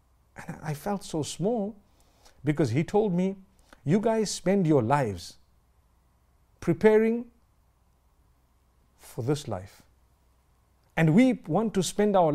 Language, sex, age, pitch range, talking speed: English, male, 50-69, 120-185 Hz, 115 wpm